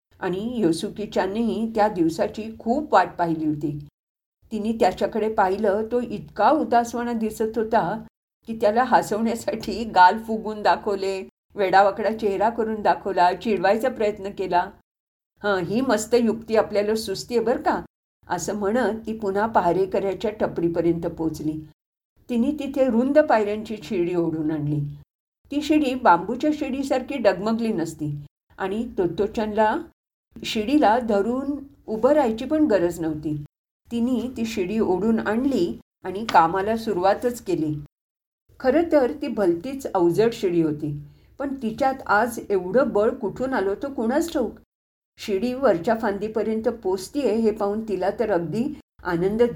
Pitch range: 190-240 Hz